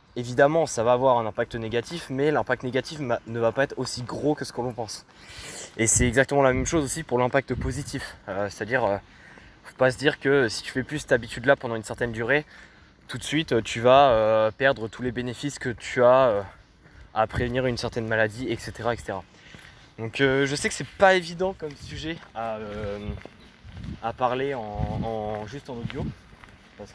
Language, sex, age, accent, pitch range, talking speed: French, male, 20-39, French, 110-140 Hz, 205 wpm